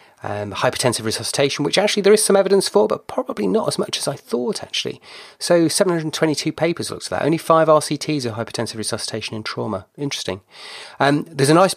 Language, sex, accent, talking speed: English, male, British, 190 wpm